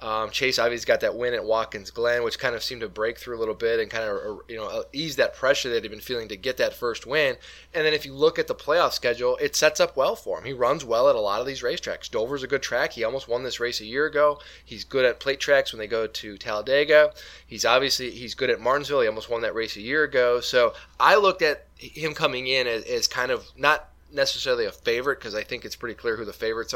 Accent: American